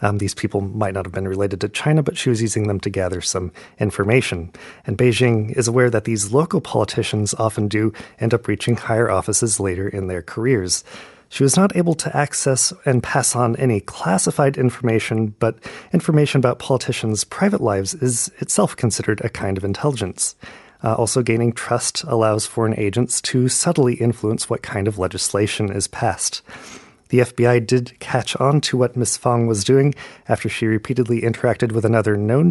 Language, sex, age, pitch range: Korean, male, 30-49, 105-130 Hz